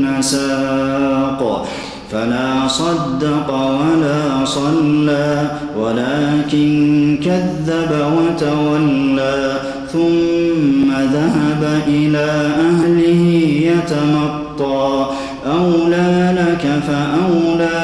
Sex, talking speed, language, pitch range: male, 55 wpm, Arabic, 135-160 Hz